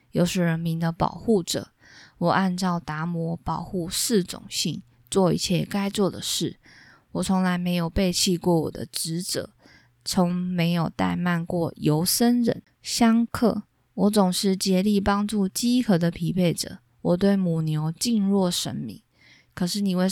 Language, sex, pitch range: Chinese, female, 165-195 Hz